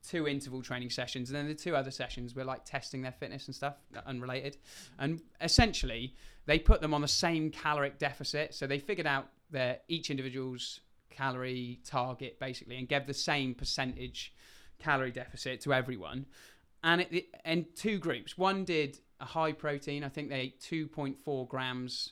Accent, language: British, English